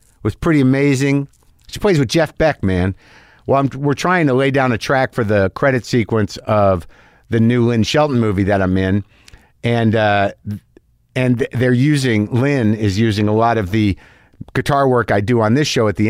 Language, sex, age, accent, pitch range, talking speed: English, male, 50-69, American, 110-130 Hz, 195 wpm